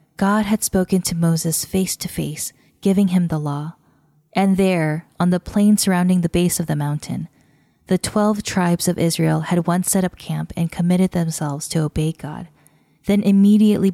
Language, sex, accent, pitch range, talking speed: English, female, American, 155-190 Hz, 175 wpm